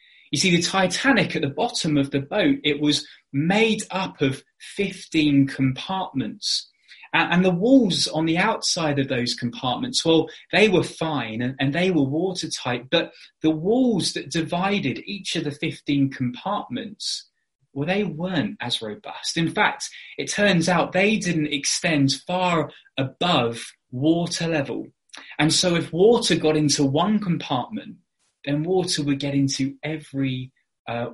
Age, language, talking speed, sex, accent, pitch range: 20-39, English, 145 wpm, male, British, 135-175 Hz